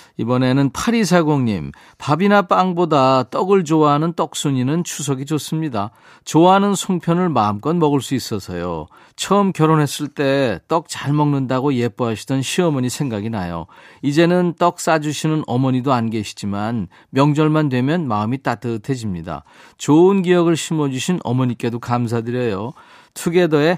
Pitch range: 120-170 Hz